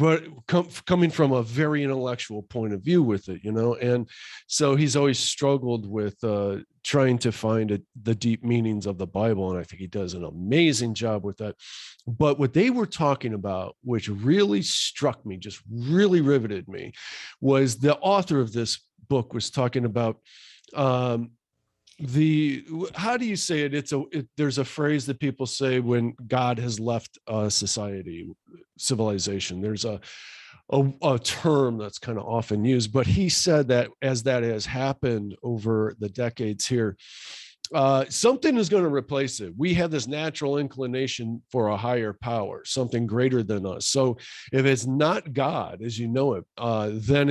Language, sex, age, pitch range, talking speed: English, male, 40-59, 110-140 Hz, 175 wpm